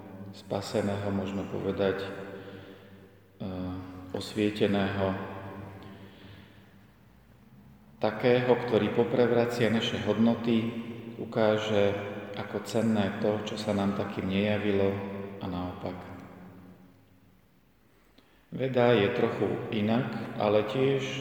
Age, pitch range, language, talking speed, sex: 40-59, 100-105 Hz, Slovak, 75 wpm, male